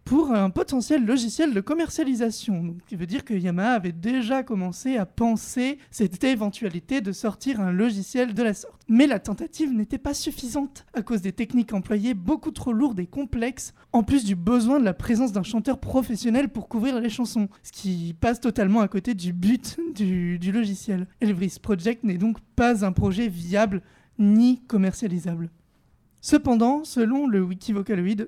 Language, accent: French, French